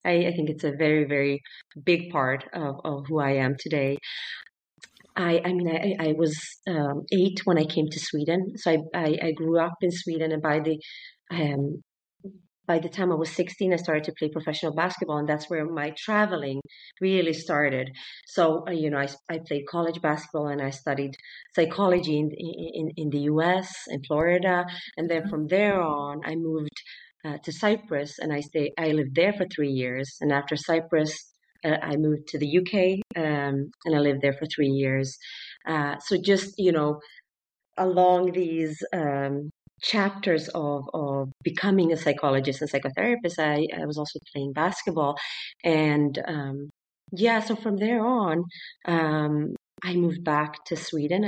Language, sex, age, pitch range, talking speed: English, female, 30-49, 150-175 Hz, 175 wpm